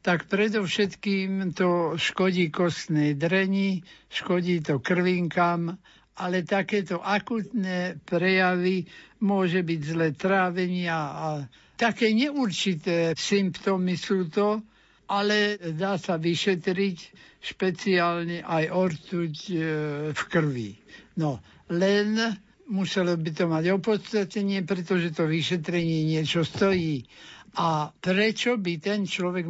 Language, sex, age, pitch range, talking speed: Slovak, male, 60-79, 165-195 Hz, 100 wpm